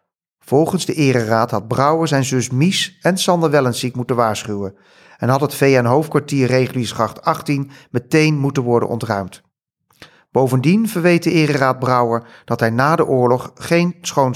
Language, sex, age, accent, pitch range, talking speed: English, male, 40-59, Dutch, 115-150 Hz, 145 wpm